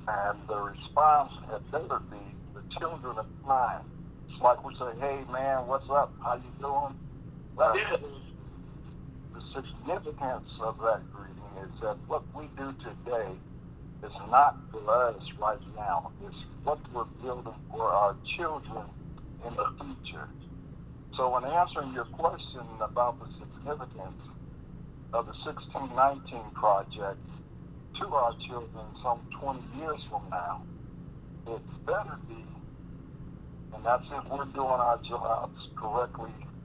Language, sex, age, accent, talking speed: English, male, 60-79, American, 130 wpm